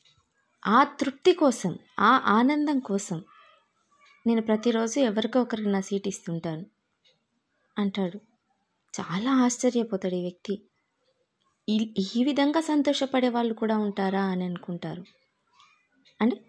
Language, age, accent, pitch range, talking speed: Telugu, 20-39, native, 195-255 Hz, 100 wpm